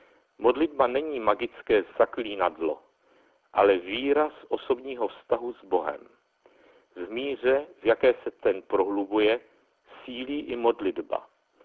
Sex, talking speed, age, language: male, 105 wpm, 60-79, Czech